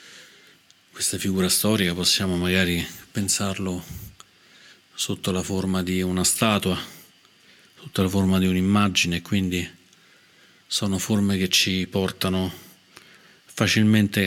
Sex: male